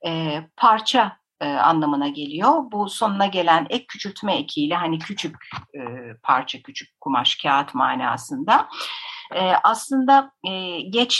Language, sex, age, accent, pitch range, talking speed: Turkish, female, 60-79, native, 170-265 Hz, 120 wpm